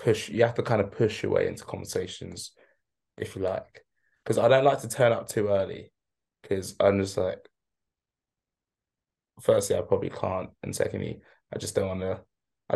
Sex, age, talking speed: male, 20-39, 185 wpm